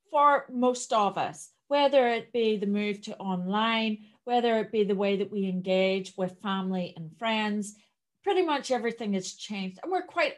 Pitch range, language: 195-250 Hz, English